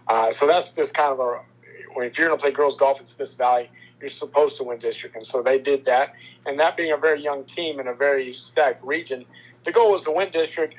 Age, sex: 50-69, male